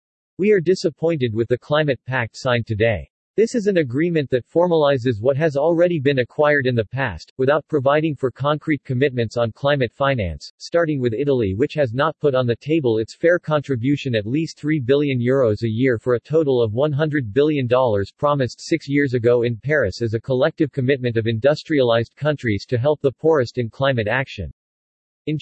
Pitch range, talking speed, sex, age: 120-150 Hz, 185 wpm, male, 40-59